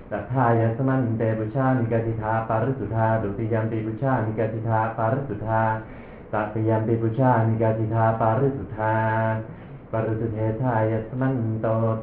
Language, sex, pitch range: Thai, male, 110-115 Hz